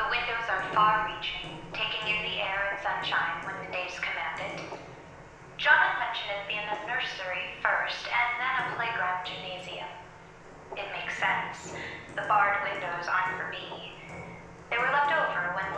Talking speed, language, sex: 165 wpm, English, female